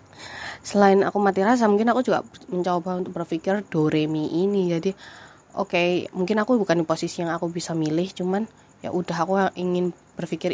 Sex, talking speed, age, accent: female, 180 wpm, 20-39, native